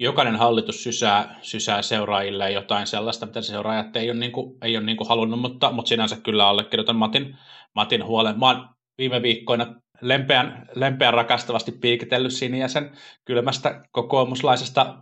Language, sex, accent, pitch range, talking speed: Finnish, male, native, 95-125 Hz, 140 wpm